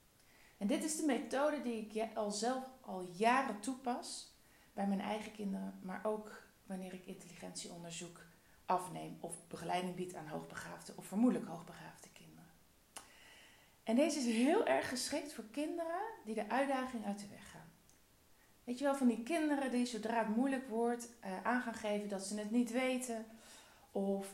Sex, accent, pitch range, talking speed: female, Dutch, 195-250 Hz, 160 wpm